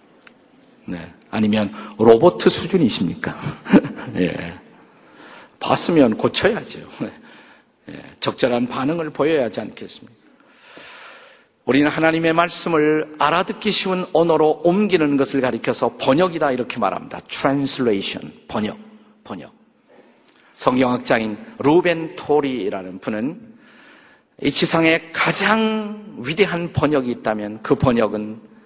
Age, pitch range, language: 50-69, 125-200 Hz, Korean